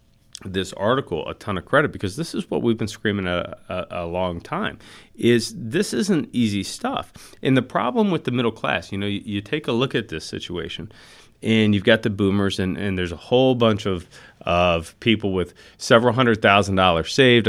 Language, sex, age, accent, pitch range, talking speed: English, male, 40-59, American, 95-125 Hz, 205 wpm